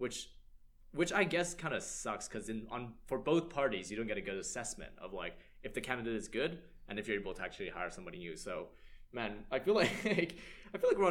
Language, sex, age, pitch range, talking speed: English, male, 20-39, 100-150 Hz, 225 wpm